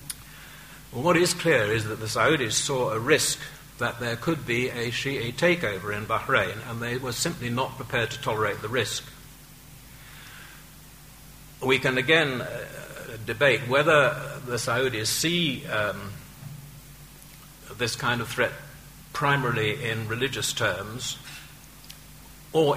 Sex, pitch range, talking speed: male, 110-145 Hz, 125 wpm